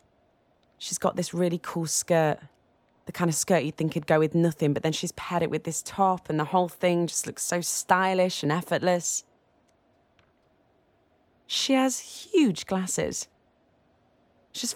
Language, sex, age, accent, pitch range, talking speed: English, female, 20-39, British, 160-215 Hz, 160 wpm